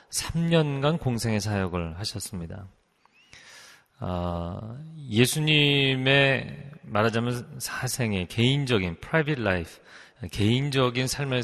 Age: 30-49